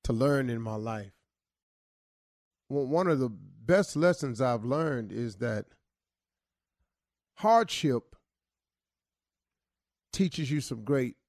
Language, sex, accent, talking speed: English, male, American, 105 wpm